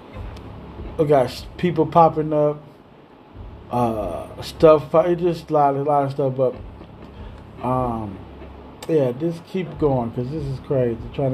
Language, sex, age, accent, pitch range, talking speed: English, male, 20-39, American, 125-155 Hz, 140 wpm